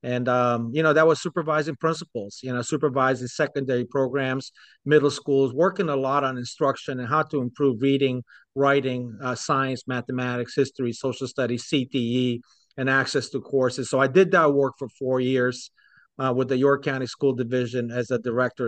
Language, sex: English, male